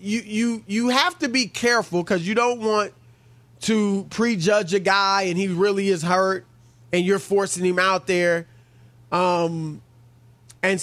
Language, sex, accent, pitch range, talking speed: English, male, American, 145-210 Hz, 155 wpm